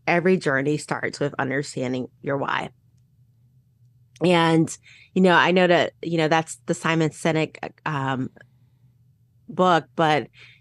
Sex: female